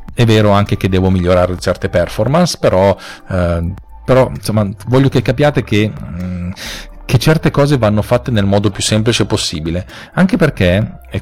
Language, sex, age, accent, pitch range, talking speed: Italian, male, 40-59, native, 100-135 Hz, 155 wpm